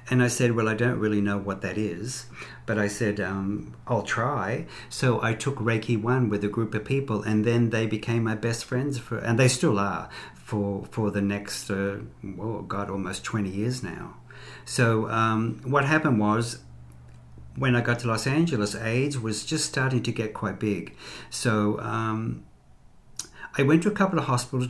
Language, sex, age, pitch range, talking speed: English, male, 50-69, 105-125 Hz, 185 wpm